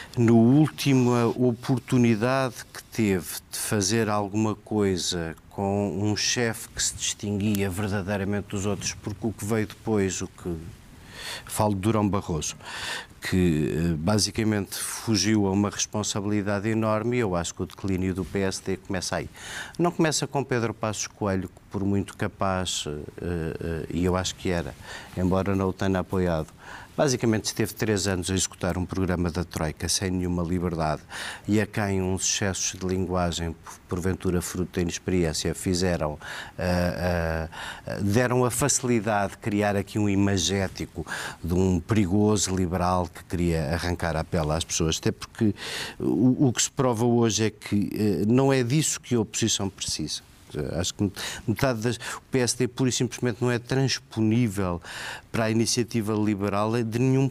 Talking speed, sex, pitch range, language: 150 wpm, male, 90-110 Hz, Portuguese